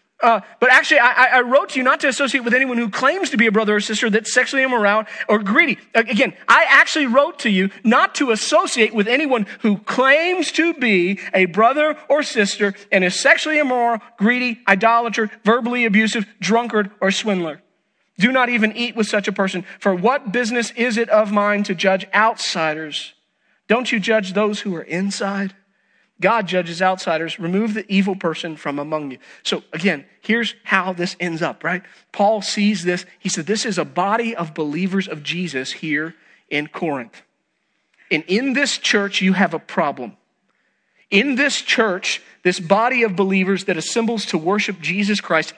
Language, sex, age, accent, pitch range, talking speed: English, male, 40-59, American, 185-240 Hz, 180 wpm